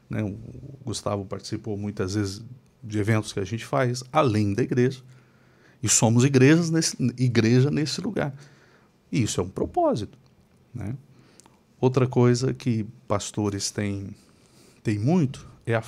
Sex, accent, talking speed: male, Brazilian, 130 wpm